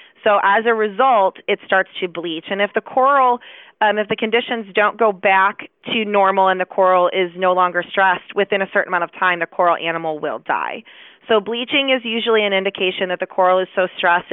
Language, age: English, 20-39